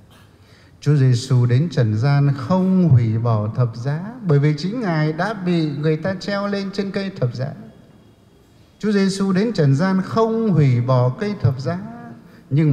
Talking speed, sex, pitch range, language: 170 wpm, male, 115-160 Hz, English